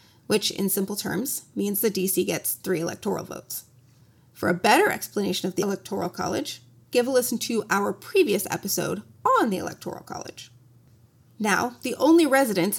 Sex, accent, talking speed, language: female, American, 160 wpm, English